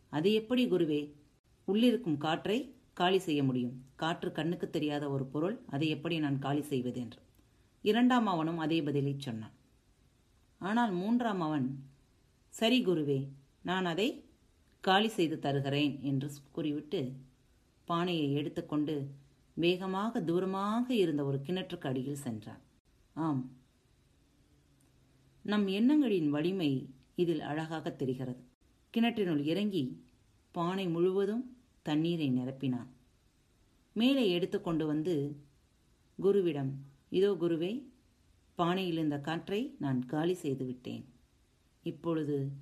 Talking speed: 100 wpm